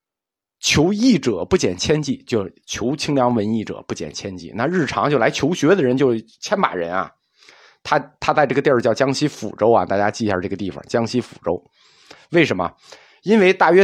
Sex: male